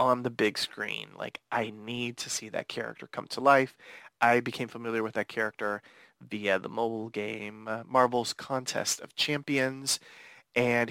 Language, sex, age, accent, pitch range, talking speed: English, male, 30-49, American, 115-150 Hz, 165 wpm